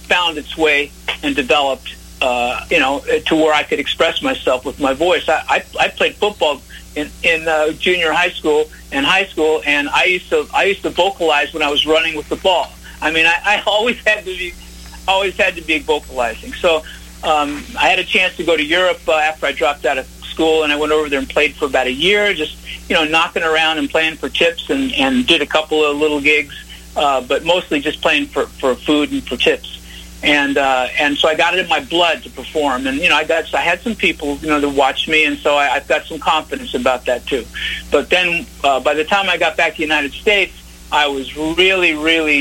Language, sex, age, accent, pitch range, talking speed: English, male, 50-69, American, 145-180 Hz, 240 wpm